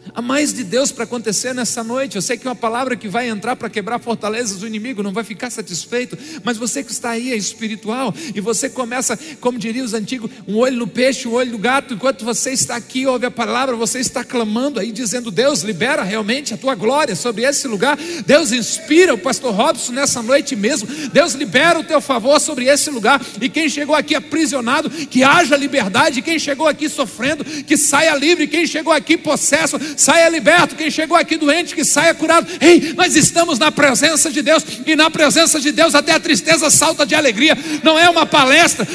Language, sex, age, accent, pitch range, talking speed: Portuguese, male, 50-69, Brazilian, 250-335 Hz, 210 wpm